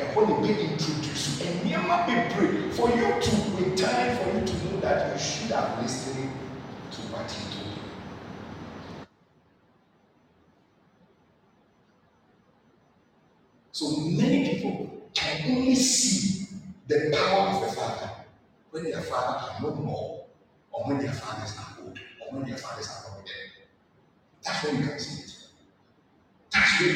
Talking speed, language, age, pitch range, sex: 145 wpm, English, 50-69, 115-170 Hz, male